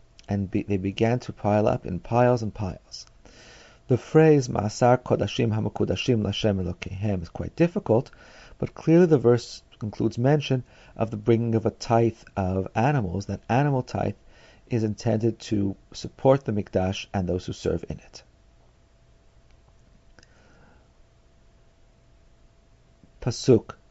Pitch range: 95-125 Hz